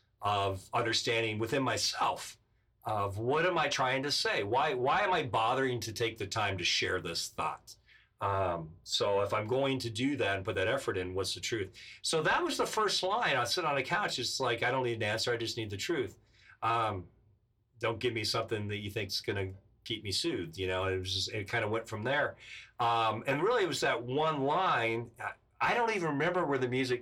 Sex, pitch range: male, 100-120 Hz